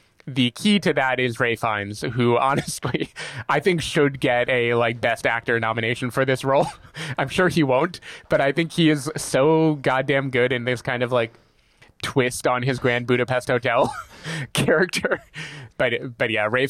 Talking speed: 175 wpm